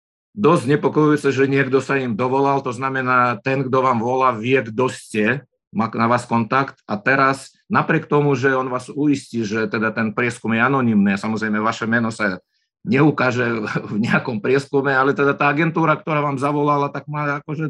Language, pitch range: Slovak, 125-155 Hz